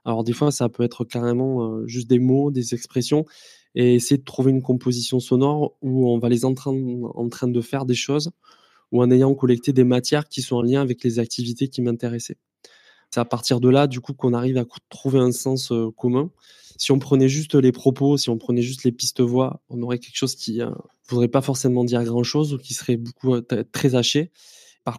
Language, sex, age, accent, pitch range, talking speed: French, male, 20-39, French, 120-135 Hz, 215 wpm